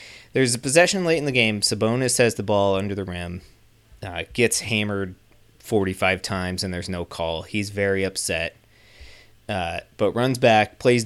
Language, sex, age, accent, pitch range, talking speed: English, male, 20-39, American, 95-110 Hz, 170 wpm